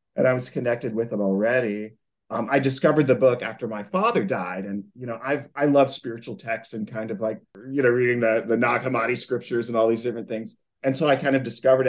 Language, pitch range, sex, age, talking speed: English, 105-130 Hz, male, 30-49, 235 wpm